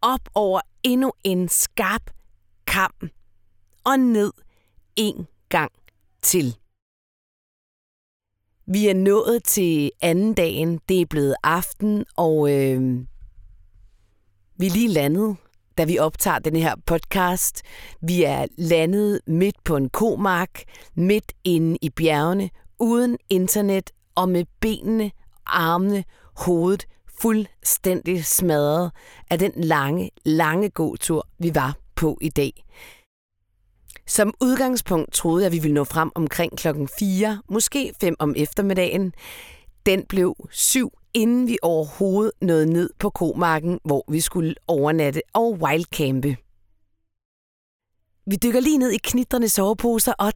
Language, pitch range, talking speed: Danish, 150-205 Hz, 125 wpm